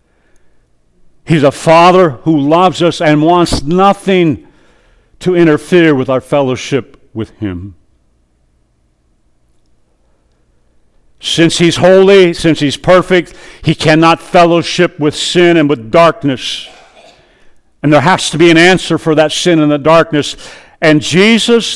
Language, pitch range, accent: English, 130-175 Hz, American